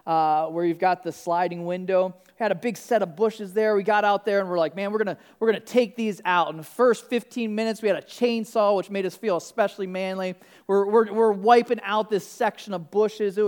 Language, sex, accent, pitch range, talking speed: English, male, American, 180-245 Hz, 245 wpm